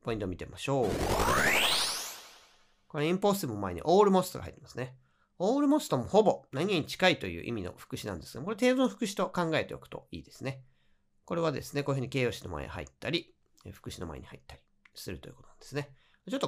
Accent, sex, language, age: native, male, Japanese, 40-59